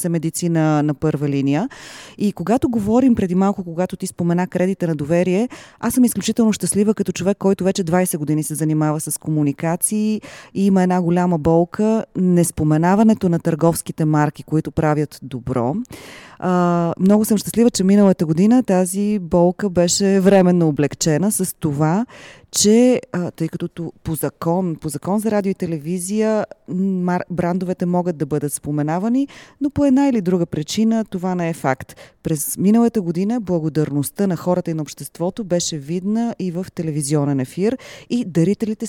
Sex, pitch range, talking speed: female, 160-200 Hz, 155 wpm